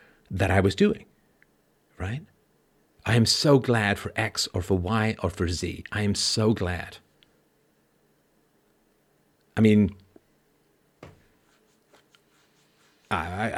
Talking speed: 105 wpm